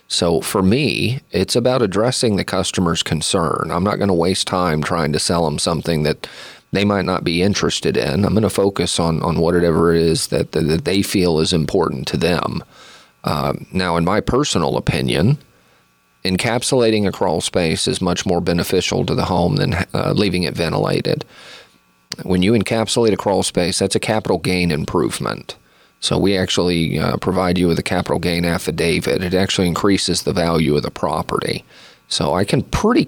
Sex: male